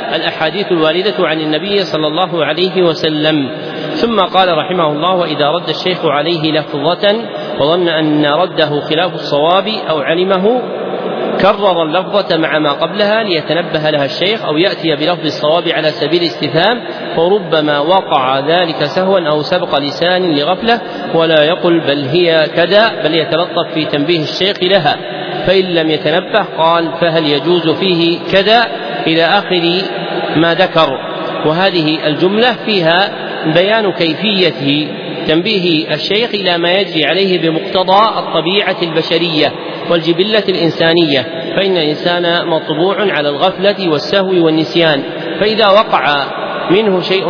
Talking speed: 125 wpm